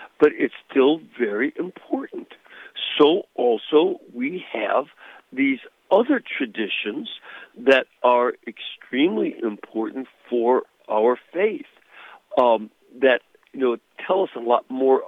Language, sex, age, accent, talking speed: English, male, 60-79, American, 110 wpm